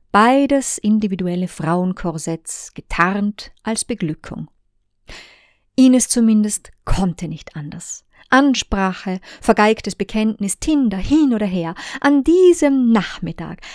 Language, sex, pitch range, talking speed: German, female, 180-245 Hz, 90 wpm